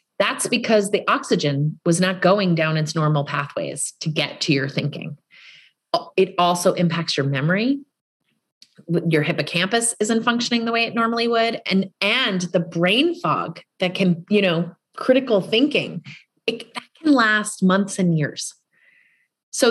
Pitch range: 170-225 Hz